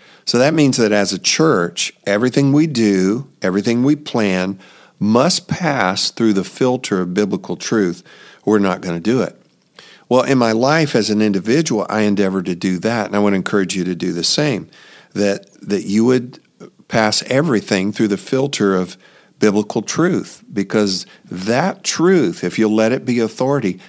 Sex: male